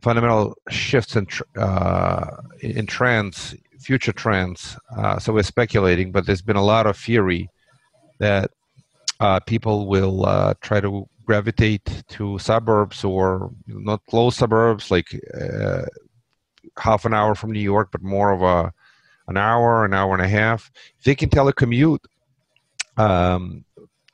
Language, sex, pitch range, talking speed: English, male, 100-120 Hz, 145 wpm